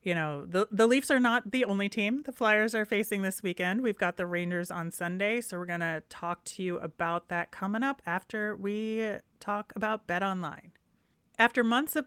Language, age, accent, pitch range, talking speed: English, 30-49, American, 175-215 Hz, 205 wpm